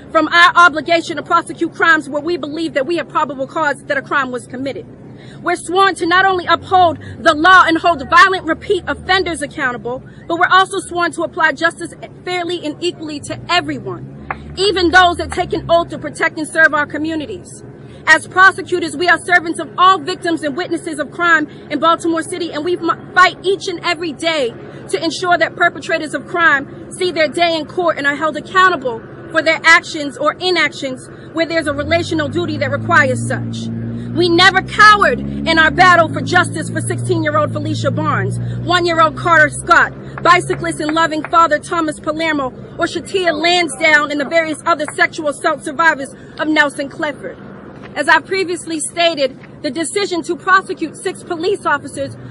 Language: English